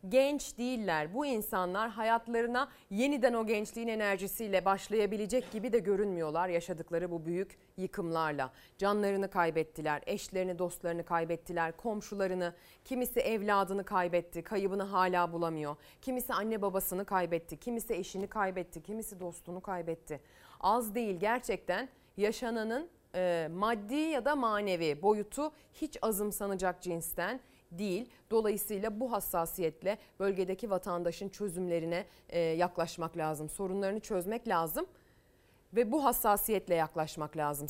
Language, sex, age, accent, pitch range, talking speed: Turkish, female, 30-49, native, 170-235 Hz, 110 wpm